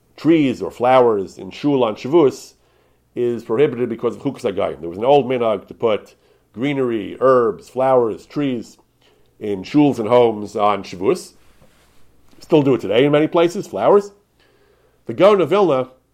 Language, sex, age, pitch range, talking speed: English, male, 40-59, 110-150 Hz, 155 wpm